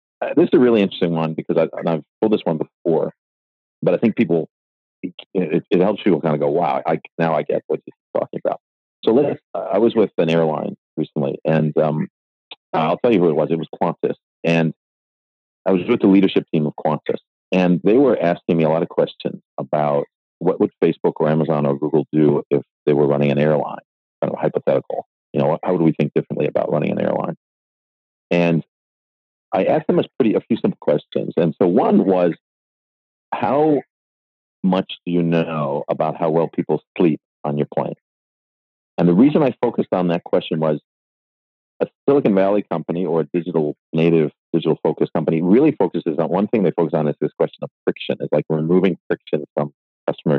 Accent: American